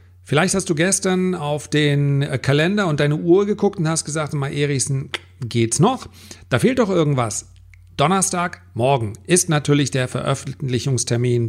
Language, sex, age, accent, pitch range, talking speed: German, male, 40-59, German, 125-165 Hz, 145 wpm